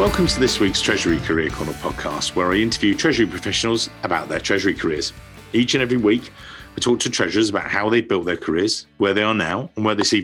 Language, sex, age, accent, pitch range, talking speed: English, male, 50-69, British, 105-125 Hz, 230 wpm